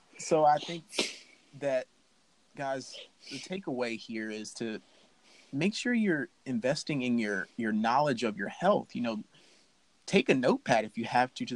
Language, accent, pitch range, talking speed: English, American, 115-160 Hz, 160 wpm